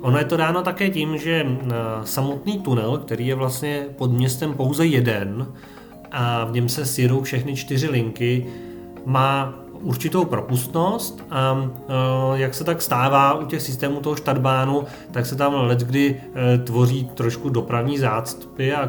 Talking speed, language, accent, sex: 145 wpm, Czech, native, male